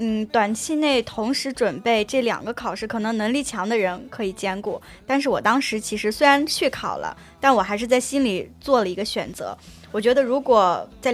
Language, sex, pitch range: Chinese, female, 205-260 Hz